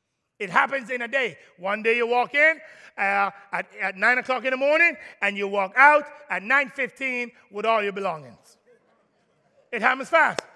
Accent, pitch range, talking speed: American, 205-260 Hz, 180 wpm